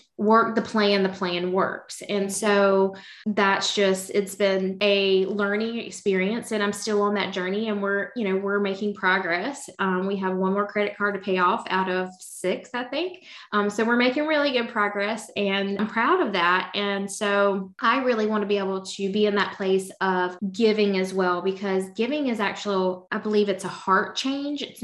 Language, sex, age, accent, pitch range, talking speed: English, female, 20-39, American, 190-210 Hz, 200 wpm